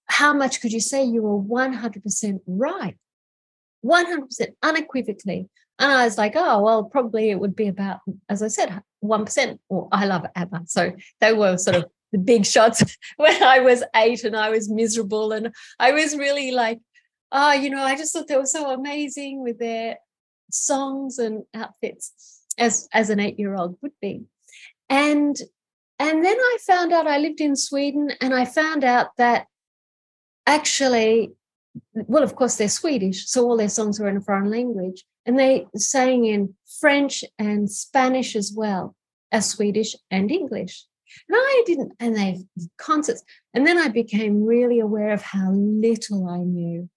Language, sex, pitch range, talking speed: English, female, 200-270 Hz, 170 wpm